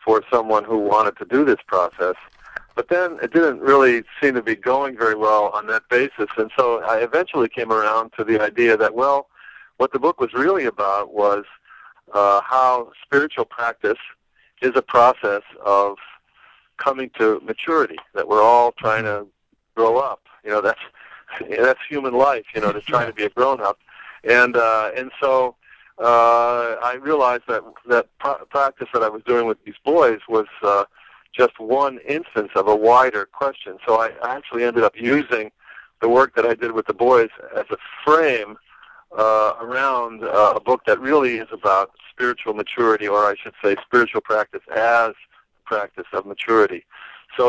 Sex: male